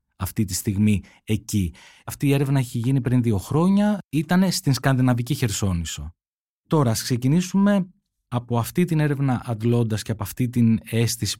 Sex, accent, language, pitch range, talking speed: male, native, Greek, 105-145 Hz, 145 wpm